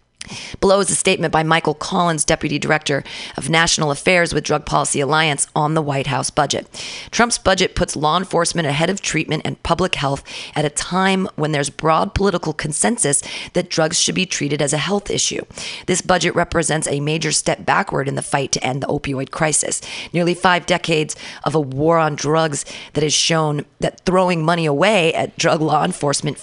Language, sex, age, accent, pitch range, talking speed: English, female, 40-59, American, 145-175 Hz, 190 wpm